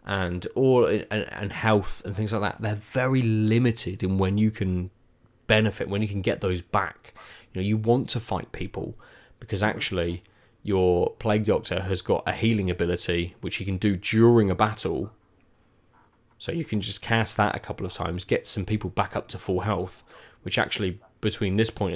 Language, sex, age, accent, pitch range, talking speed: English, male, 20-39, British, 95-115 Hz, 190 wpm